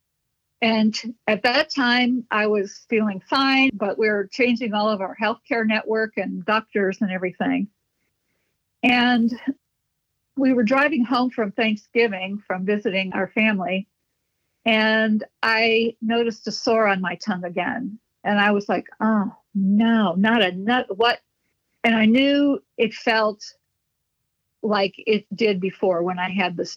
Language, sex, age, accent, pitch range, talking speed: English, female, 50-69, American, 200-240 Hz, 145 wpm